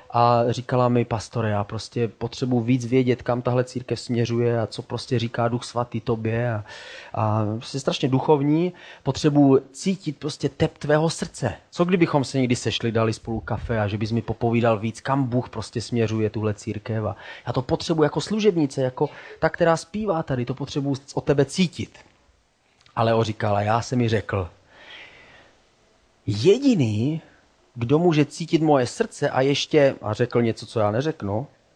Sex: male